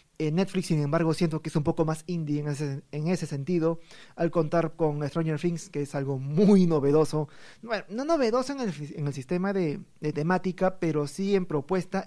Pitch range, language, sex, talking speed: 155-200 Hz, Spanish, male, 190 wpm